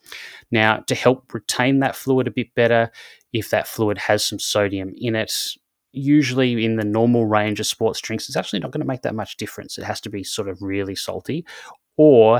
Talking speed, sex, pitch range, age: 210 wpm, male, 95-110 Hz, 20-39